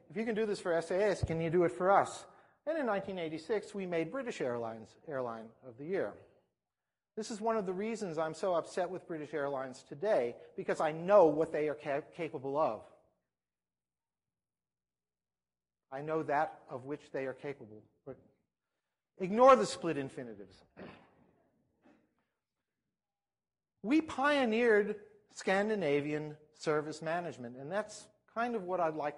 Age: 50-69